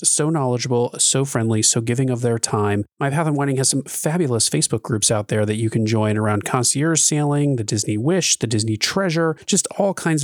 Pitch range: 125-160 Hz